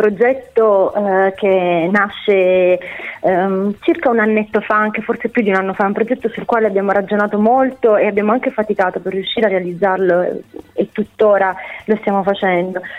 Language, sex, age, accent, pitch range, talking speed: Italian, female, 30-49, native, 180-215 Hz, 155 wpm